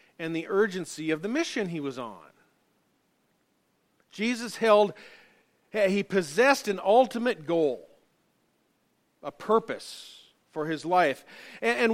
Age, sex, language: 50-69, male, English